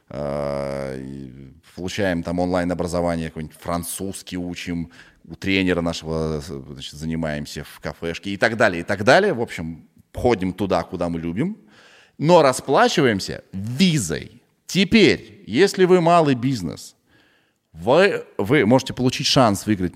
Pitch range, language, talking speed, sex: 85-135 Hz, Russian, 115 wpm, male